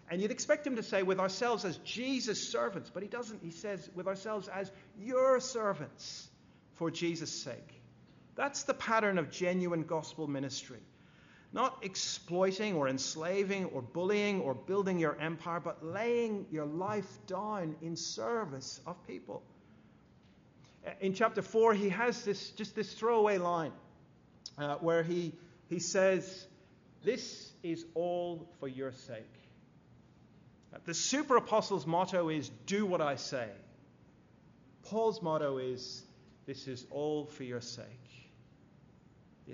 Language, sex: English, male